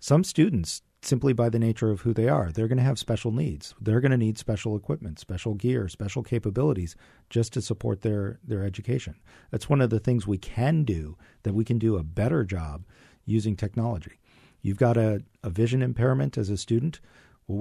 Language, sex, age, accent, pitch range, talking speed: English, male, 40-59, American, 100-120 Hz, 200 wpm